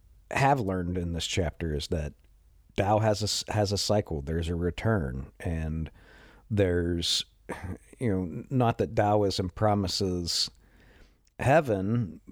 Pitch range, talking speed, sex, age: 80-105 Hz, 120 wpm, male, 50-69